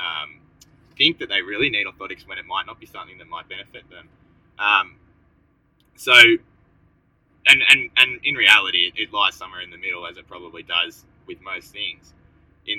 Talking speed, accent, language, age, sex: 180 wpm, Australian, English, 20-39, male